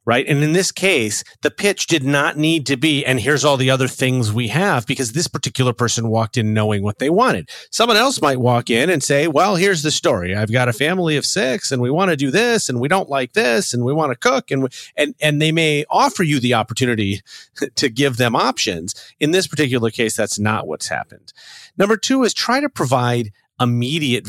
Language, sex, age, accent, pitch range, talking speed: English, male, 40-59, American, 115-155 Hz, 225 wpm